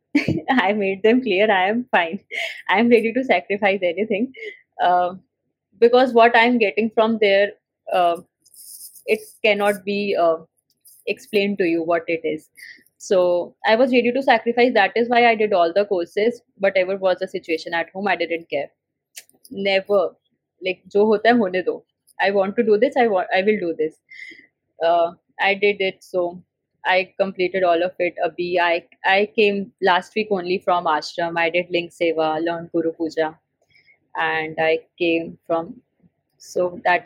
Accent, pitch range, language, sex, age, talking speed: Indian, 170-215 Hz, English, female, 20-39, 160 wpm